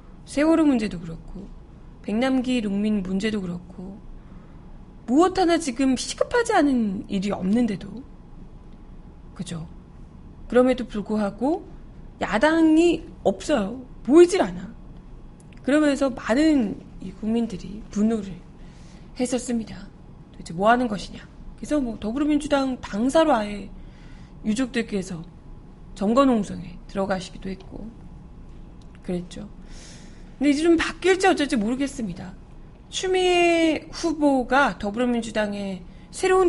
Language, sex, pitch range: Korean, female, 195-275 Hz